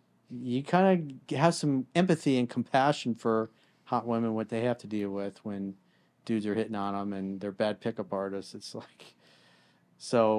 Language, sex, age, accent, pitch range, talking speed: English, male, 40-59, American, 110-140 Hz, 180 wpm